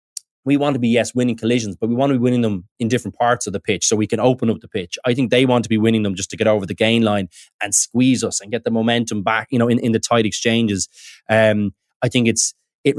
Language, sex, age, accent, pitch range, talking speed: English, male, 20-39, Irish, 110-135 Hz, 285 wpm